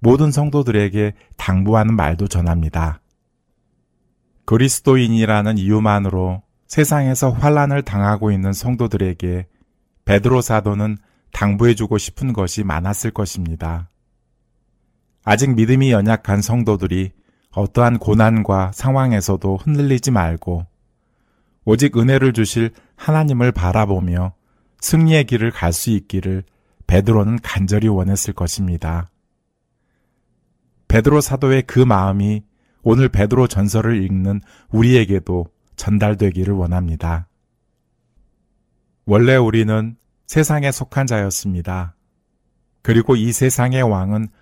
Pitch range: 95-120 Hz